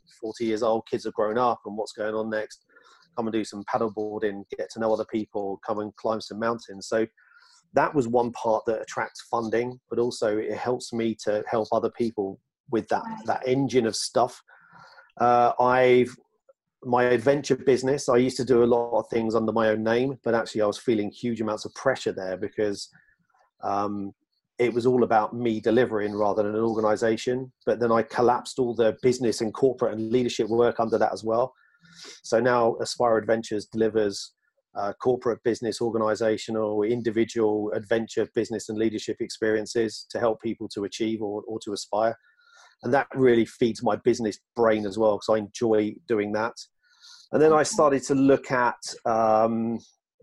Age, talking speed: 30-49, 180 wpm